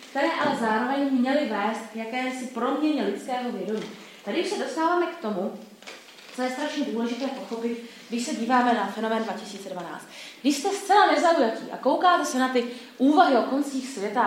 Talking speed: 170 wpm